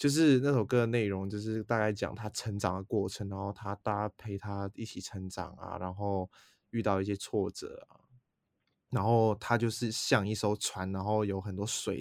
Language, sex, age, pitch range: Chinese, male, 20-39, 95-110 Hz